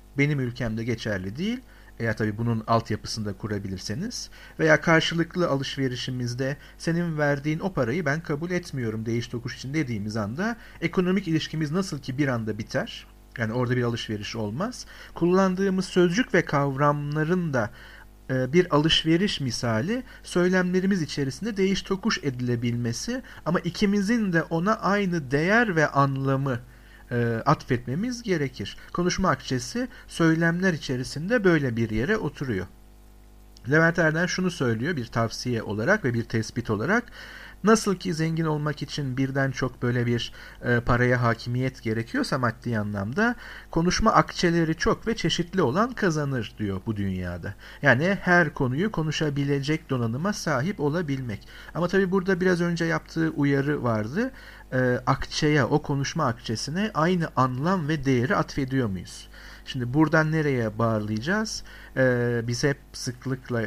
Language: Turkish